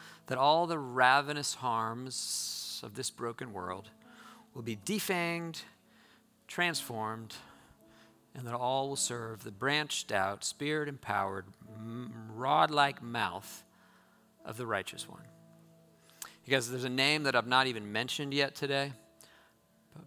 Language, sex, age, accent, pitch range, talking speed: English, male, 50-69, American, 110-150 Hz, 130 wpm